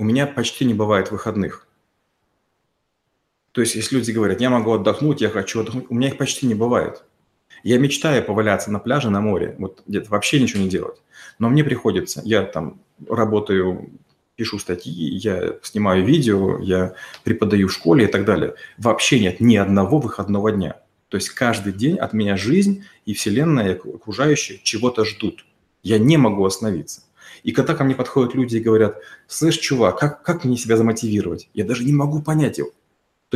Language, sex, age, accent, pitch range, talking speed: Russian, male, 30-49, native, 105-140 Hz, 180 wpm